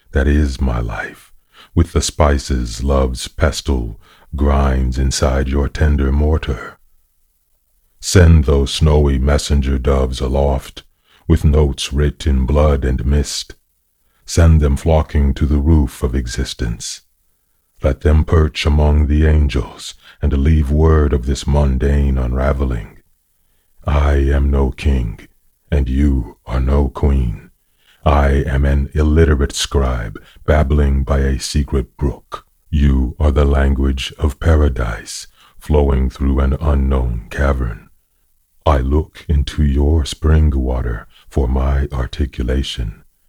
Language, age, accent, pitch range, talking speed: English, 40-59, American, 65-75 Hz, 120 wpm